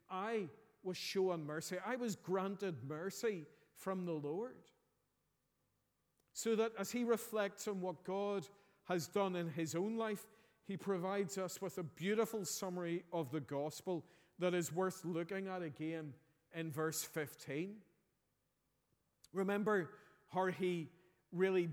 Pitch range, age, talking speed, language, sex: 165-195 Hz, 40-59, 135 wpm, English, male